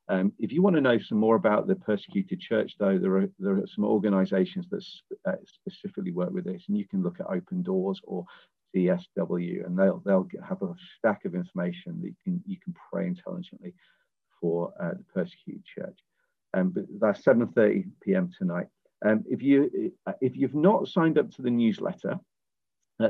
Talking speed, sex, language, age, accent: 185 wpm, male, English, 40-59, British